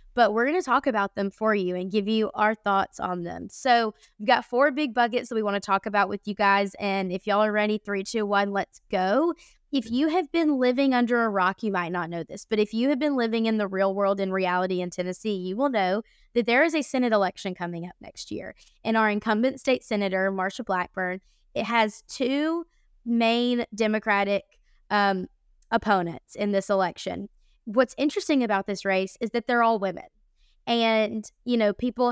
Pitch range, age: 195-235 Hz, 20-39